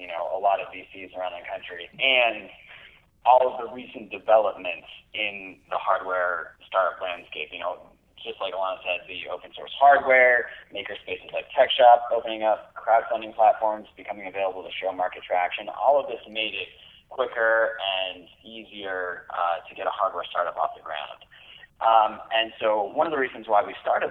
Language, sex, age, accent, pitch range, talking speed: English, male, 30-49, American, 95-115 Hz, 175 wpm